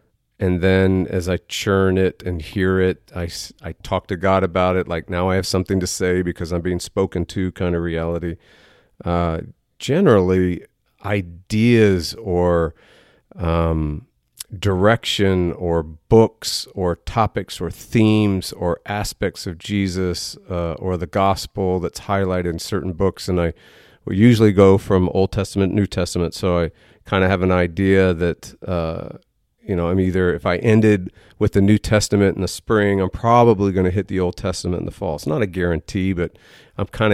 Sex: male